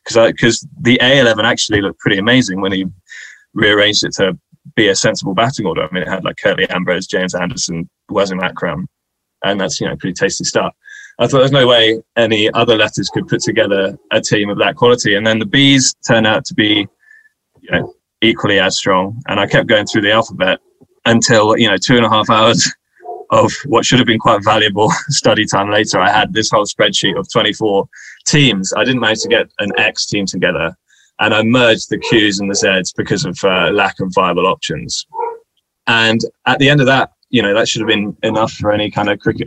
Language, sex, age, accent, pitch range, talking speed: English, male, 20-39, British, 105-130 Hz, 215 wpm